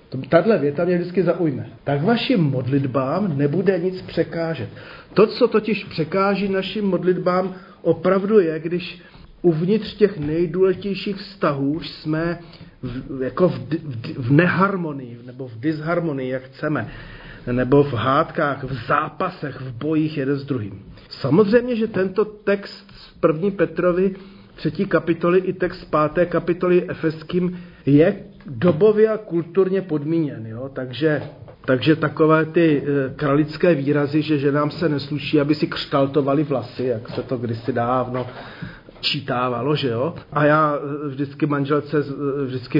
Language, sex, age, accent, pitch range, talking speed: Czech, male, 40-59, native, 140-180 Hz, 130 wpm